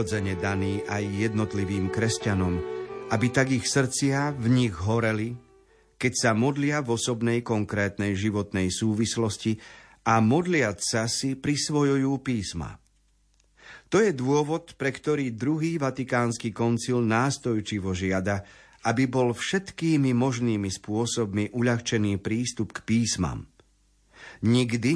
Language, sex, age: Slovak, male, 40-59